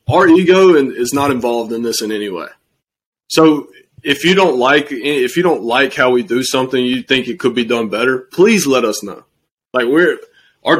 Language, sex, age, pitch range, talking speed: English, male, 30-49, 115-140 Hz, 205 wpm